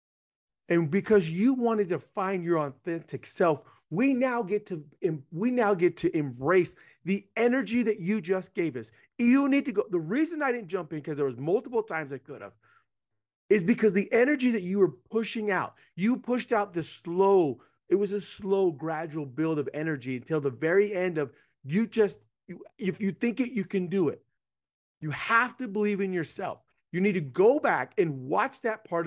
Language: English